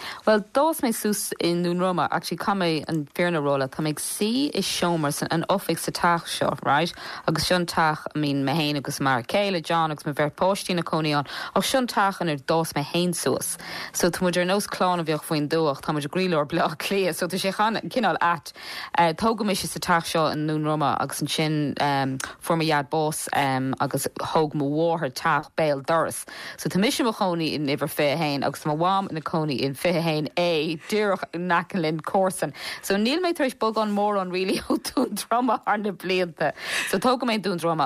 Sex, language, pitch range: female, English, 150-185 Hz